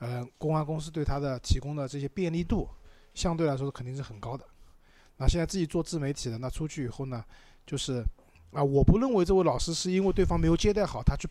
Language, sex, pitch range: Chinese, male, 120-160 Hz